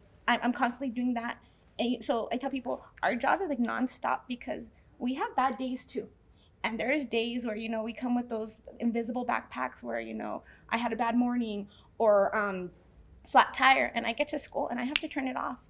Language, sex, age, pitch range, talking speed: English, female, 20-39, 235-265 Hz, 210 wpm